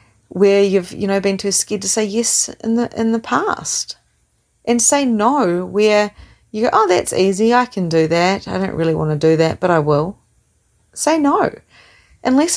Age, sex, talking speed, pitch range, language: 30-49, female, 190 wpm, 150-225 Hz, English